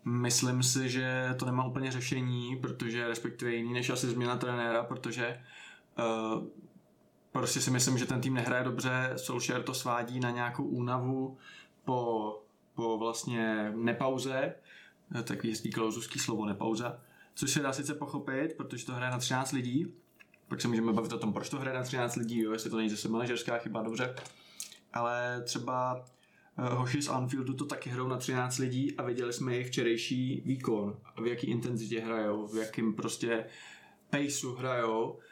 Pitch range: 120-130 Hz